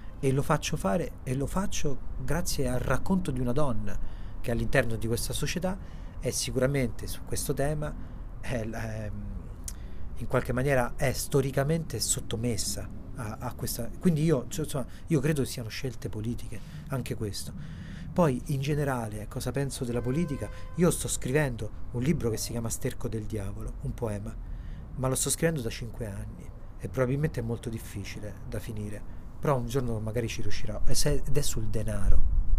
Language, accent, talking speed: Italian, native, 165 wpm